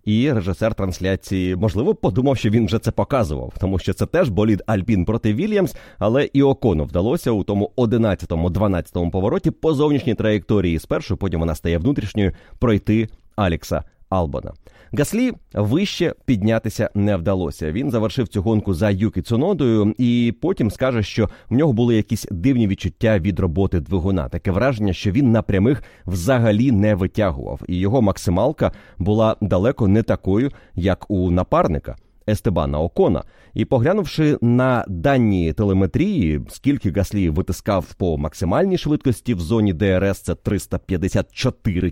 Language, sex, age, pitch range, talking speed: Ukrainian, male, 30-49, 95-120 Hz, 140 wpm